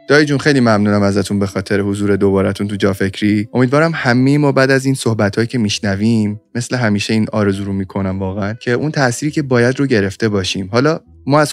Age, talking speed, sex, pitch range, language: 20-39, 205 wpm, male, 100-130 Hz, Persian